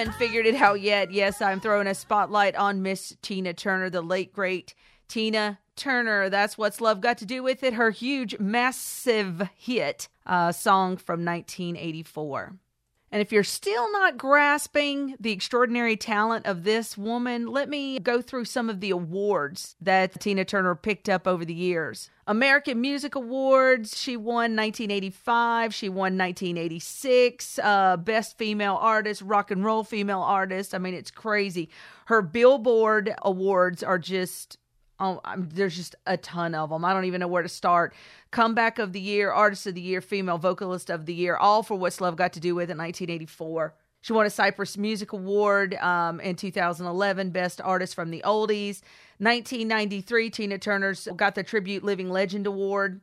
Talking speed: 165 wpm